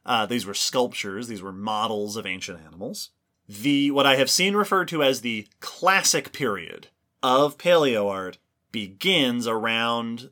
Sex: male